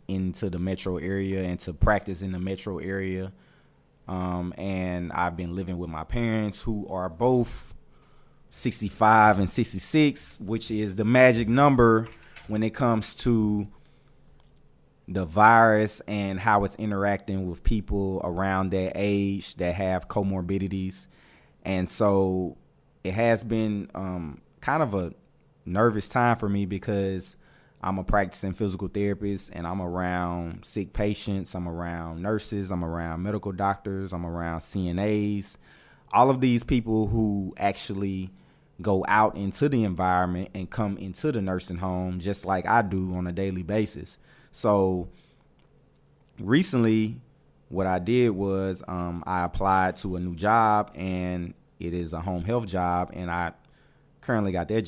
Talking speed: 145 wpm